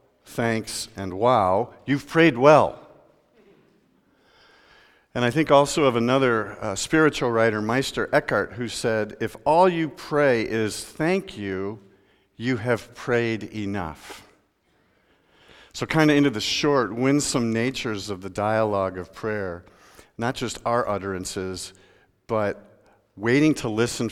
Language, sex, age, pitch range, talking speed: English, male, 50-69, 105-140 Hz, 125 wpm